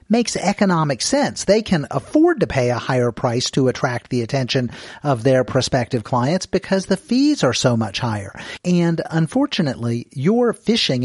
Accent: American